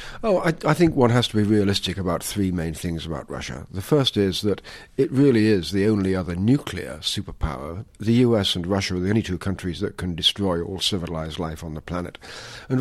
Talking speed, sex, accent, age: 215 wpm, male, British, 50-69